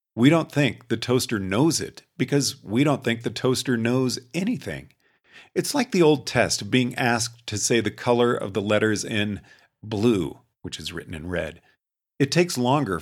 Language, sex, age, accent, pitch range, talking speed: English, male, 40-59, American, 110-135 Hz, 185 wpm